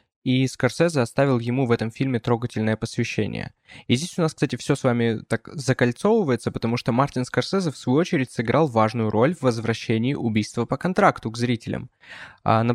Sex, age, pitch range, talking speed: male, 20-39, 115-135 Hz, 175 wpm